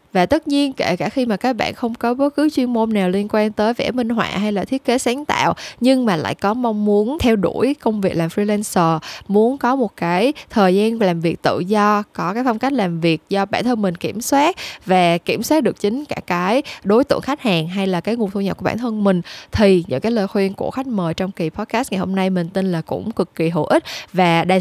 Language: Vietnamese